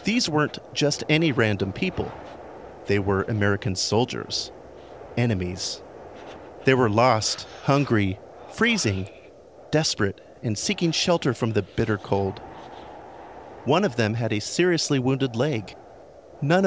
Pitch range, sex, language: 105-160 Hz, male, English